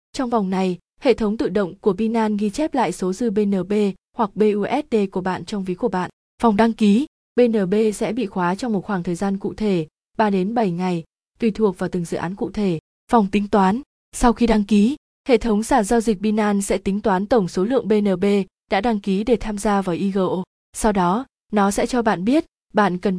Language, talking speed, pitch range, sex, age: Vietnamese, 225 wpm, 190-230 Hz, female, 20-39